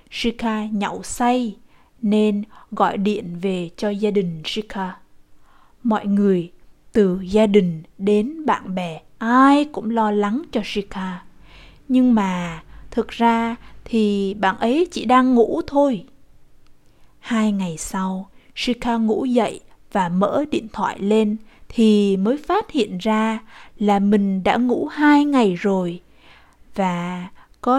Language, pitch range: Vietnamese, 195-240 Hz